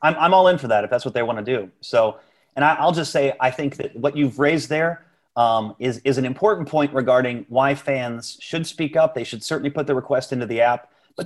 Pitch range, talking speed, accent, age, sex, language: 125-150 Hz, 250 wpm, American, 30-49, male, English